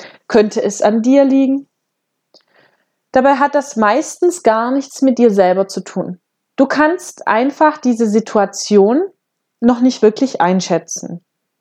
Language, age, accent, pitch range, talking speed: German, 20-39, German, 200-260 Hz, 130 wpm